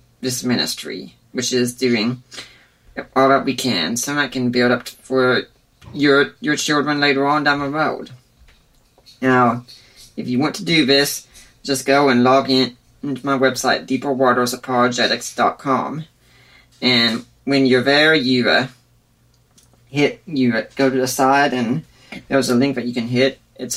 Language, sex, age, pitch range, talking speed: English, female, 30-49, 120-135 Hz, 155 wpm